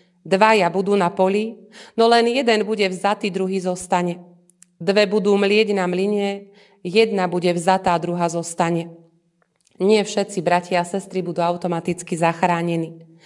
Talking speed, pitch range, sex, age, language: 130 wpm, 175-210 Hz, female, 30-49, Slovak